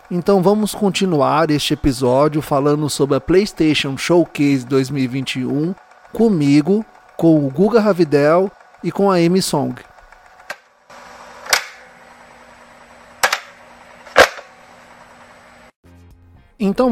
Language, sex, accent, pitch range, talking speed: Portuguese, male, Brazilian, 150-195 Hz, 80 wpm